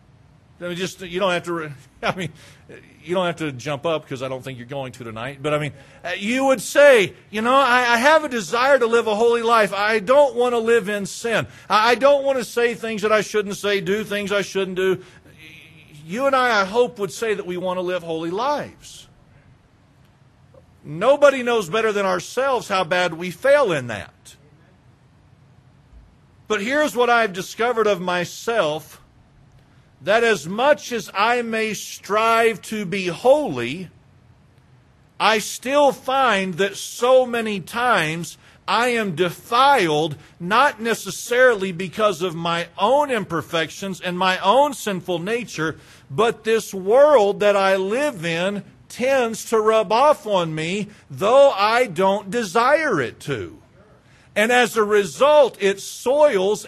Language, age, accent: English, 40-59, American